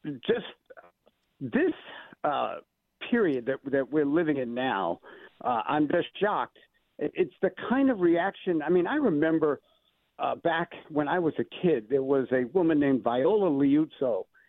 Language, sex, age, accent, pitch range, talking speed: English, male, 60-79, American, 140-220 Hz, 155 wpm